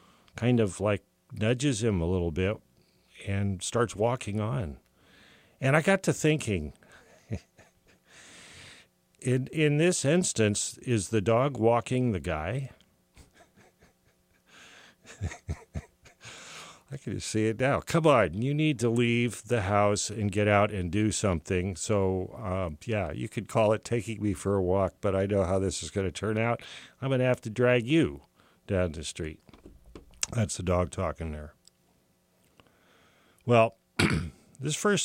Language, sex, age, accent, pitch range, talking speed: English, male, 50-69, American, 90-120 Hz, 145 wpm